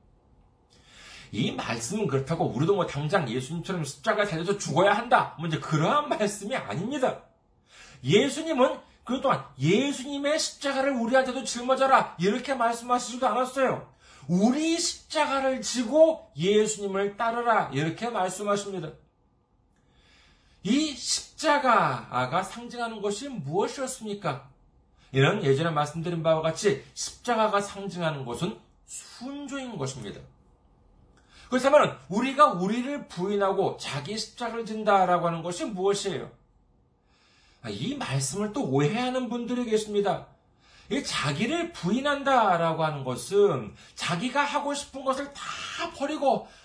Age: 40-59